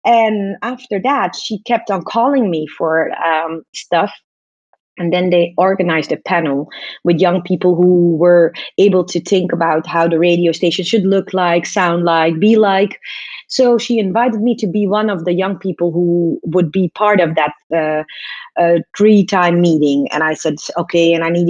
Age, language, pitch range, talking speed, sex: 30-49, English, 170-225 Hz, 180 wpm, female